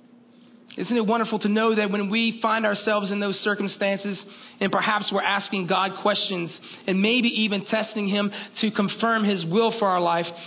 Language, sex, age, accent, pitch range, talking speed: English, male, 30-49, American, 220-270 Hz, 180 wpm